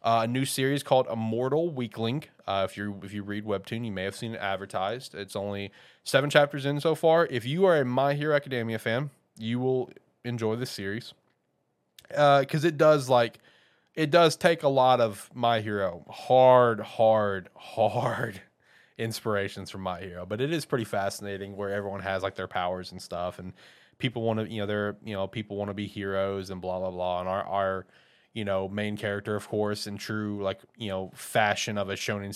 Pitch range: 100-120 Hz